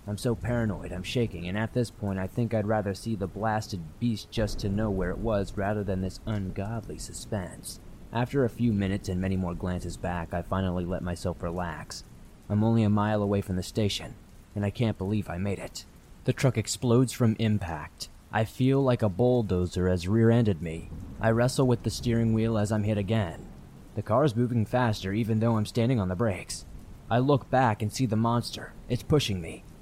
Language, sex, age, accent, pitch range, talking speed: English, male, 20-39, American, 100-120 Hz, 205 wpm